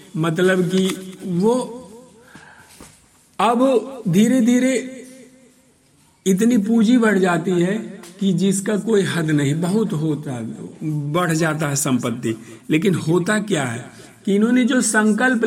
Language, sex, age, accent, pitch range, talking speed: Hindi, male, 50-69, native, 145-205 Hz, 120 wpm